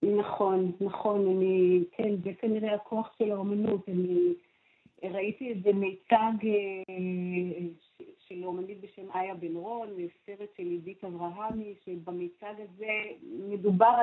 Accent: native